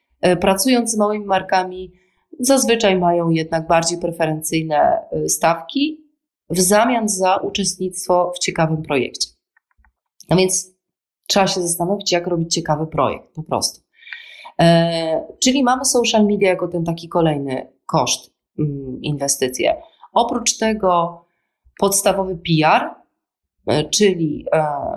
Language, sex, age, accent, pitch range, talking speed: Polish, female, 30-49, native, 165-210 Hz, 105 wpm